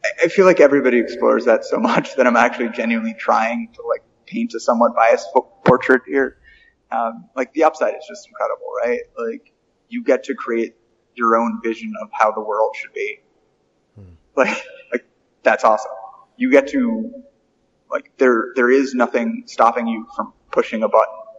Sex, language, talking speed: male, English, 175 wpm